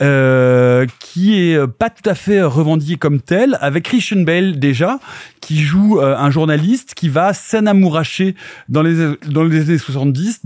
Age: 30-49